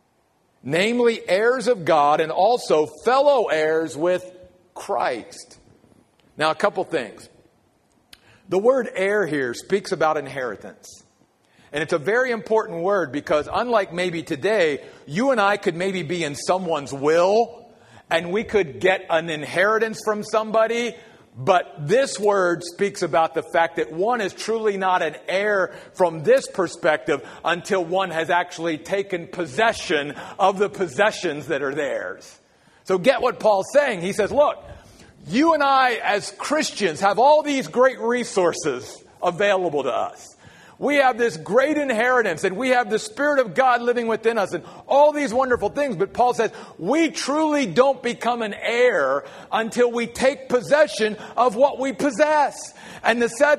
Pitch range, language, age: 185-260 Hz, English, 50-69